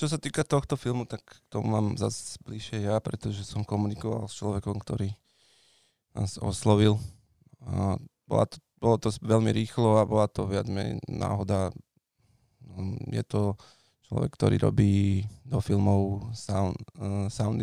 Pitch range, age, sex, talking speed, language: 100-115 Hz, 20-39, male, 145 wpm, Slovak